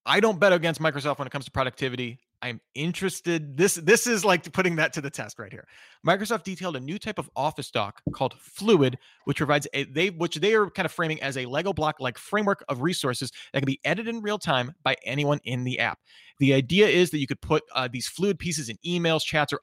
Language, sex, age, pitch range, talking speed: English, male, 30-49, 130-170 Hz, 240 wpm